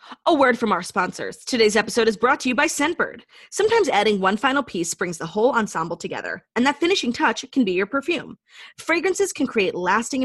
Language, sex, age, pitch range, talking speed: English, female, 30-49, 190-270 Hz, 205 wpm